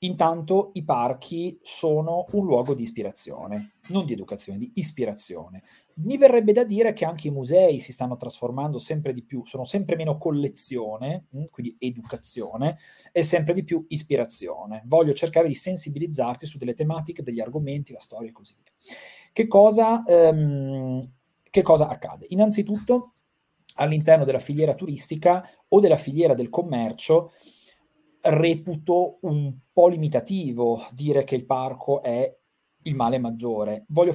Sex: male